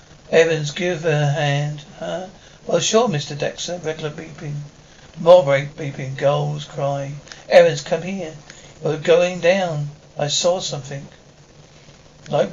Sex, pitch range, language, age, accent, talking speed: male, 150-175 Hz, English, 60-79, British, 130 wpm